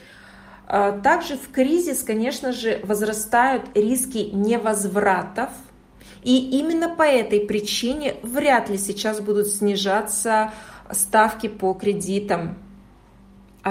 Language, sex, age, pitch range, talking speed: Russian, female, 30-49, 205-255 Hz, 95 wpm